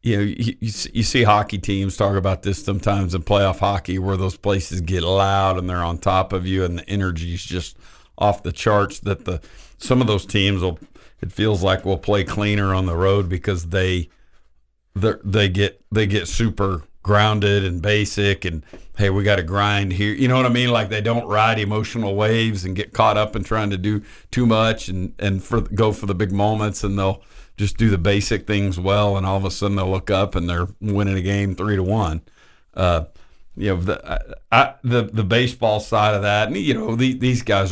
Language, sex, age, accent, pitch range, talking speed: English, male, 50-69, American, 90-105 Hz, 215 wpm